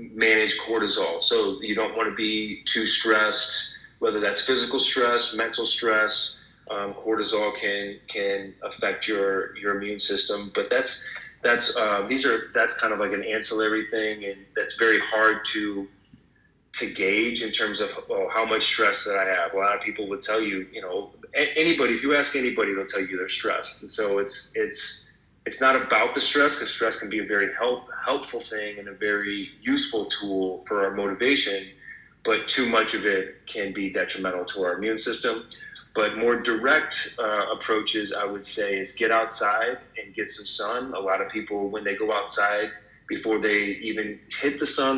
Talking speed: 190 wpm